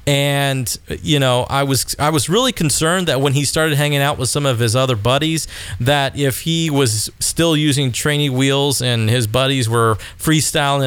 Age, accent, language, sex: 40-59, American, English, male